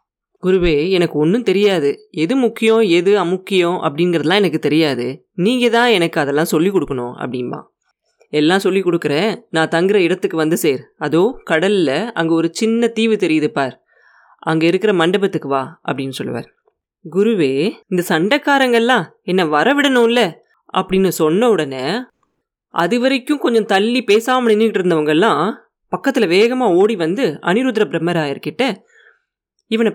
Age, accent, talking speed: 20-39, native, 125 wpm